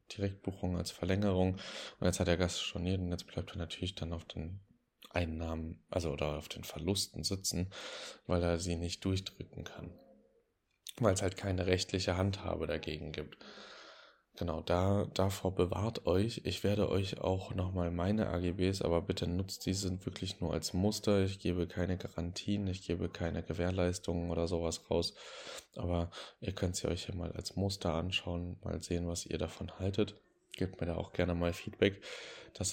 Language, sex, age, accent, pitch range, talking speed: German, male, 20-39, German, 85-100 Hz, 170 wpm